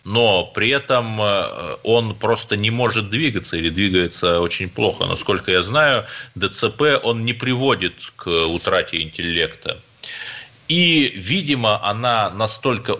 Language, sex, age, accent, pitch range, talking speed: Russian, male, 30-49, native, 90-125 Hz, 115 wpm